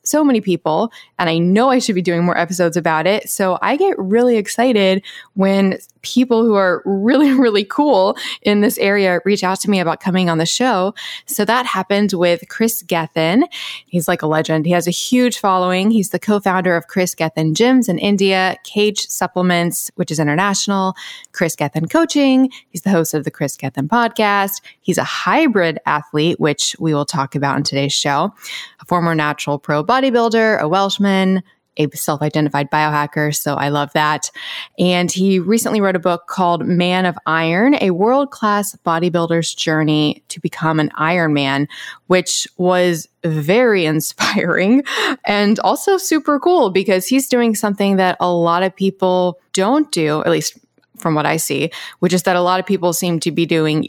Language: English